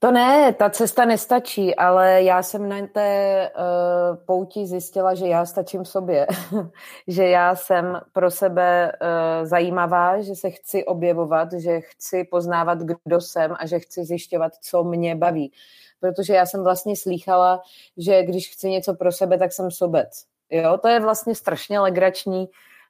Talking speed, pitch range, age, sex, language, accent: 150 wpm, 165-195 Hz, 30-49, female, Czech, native